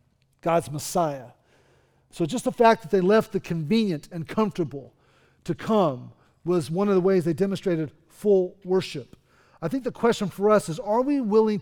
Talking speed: 175 wpm